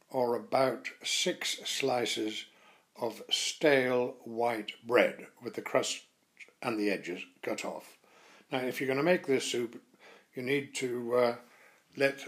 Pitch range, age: 115-140 Hz, 60-79